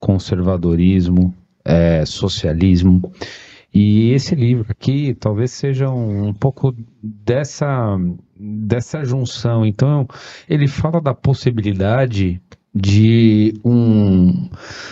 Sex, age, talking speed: male, 50-69, 85 wpm